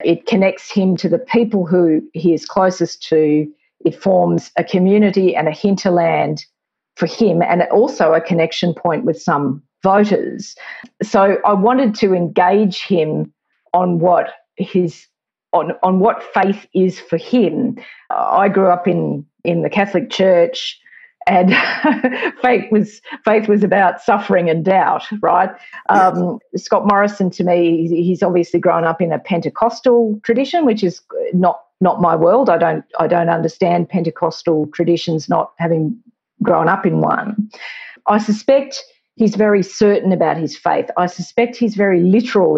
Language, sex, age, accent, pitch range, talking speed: English, female, 50-69, Australian, 170-215 Hz, 150 wpm